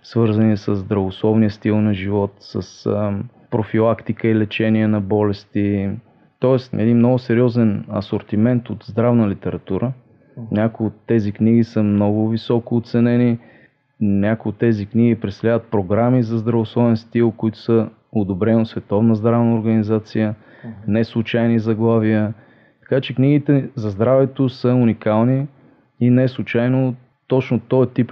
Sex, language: male, Bulgarian